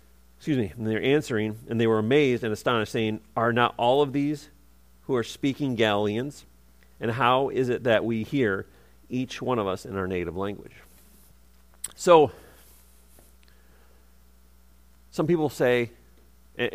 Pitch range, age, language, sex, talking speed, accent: 90-140 Hz, 40-59, English, male, 145 wpm, American